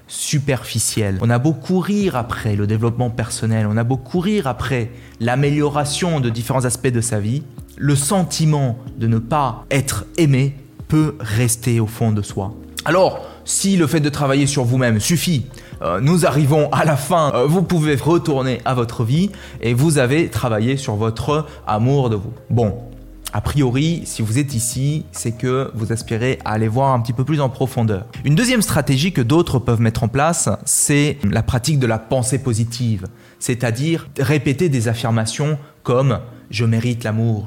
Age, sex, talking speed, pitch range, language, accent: 20-39, male, 175 wpm, 115-150 Hz, French, French